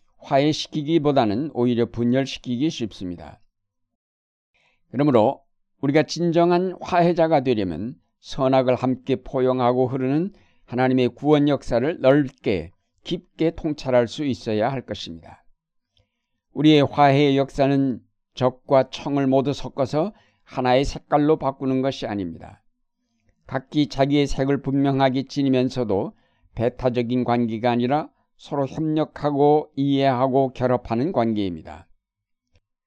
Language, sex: Korean, male